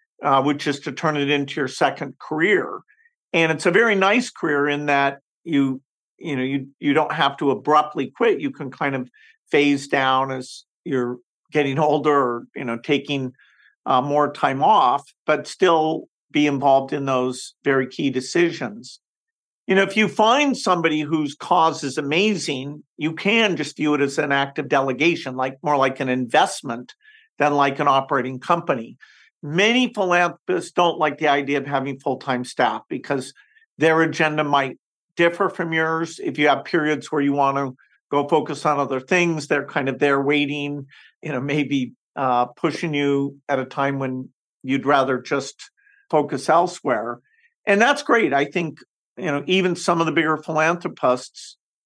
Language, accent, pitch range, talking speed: English, American, 140-170 Hz, 170 wpm